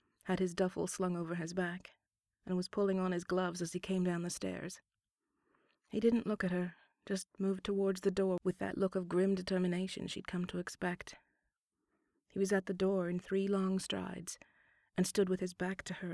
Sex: female